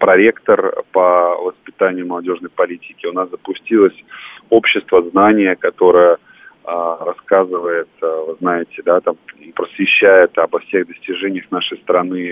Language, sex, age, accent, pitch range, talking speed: Russian, male, 30-49, native, 85-115 Hz, 105 wpm